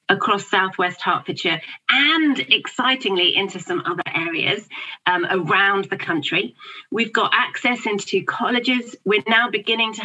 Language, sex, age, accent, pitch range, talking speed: English, female, 30-49, British, 185-240 Hz, 130 wpm